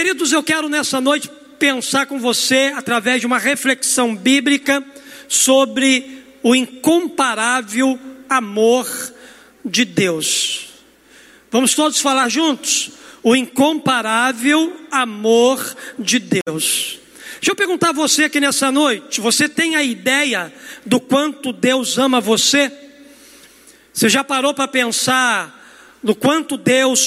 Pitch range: 255-300 Hz